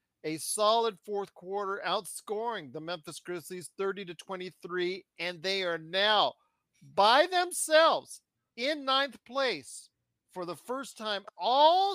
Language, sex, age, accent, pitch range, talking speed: English, male, 40-59, American, 160-210 Hz, 120 wpm